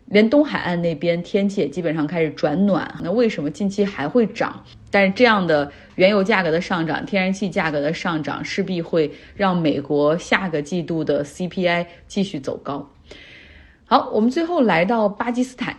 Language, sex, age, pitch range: Chinese, female, 30-49, 165-225 Hz